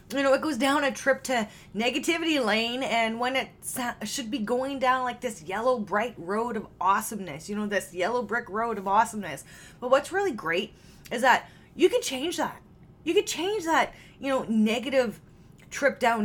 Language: English